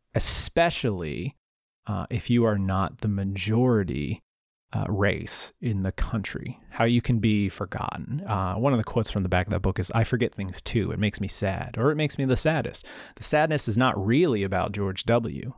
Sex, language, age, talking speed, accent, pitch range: male, English, 30-49, 200 wpm, American, 100-125 Hz